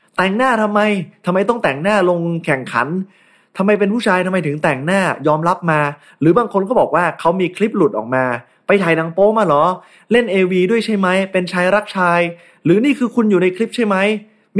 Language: Thai